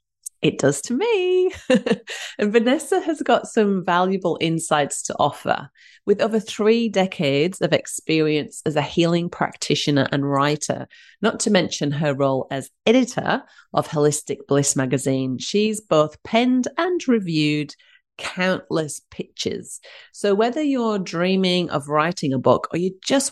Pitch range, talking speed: 145-220 Hz, 140 wpm